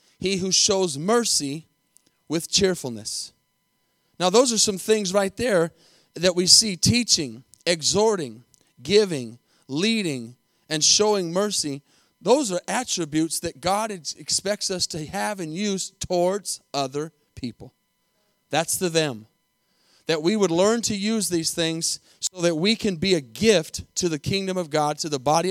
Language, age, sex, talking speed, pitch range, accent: English, 30-49, male, 150 wpm, 150-200 Hz, American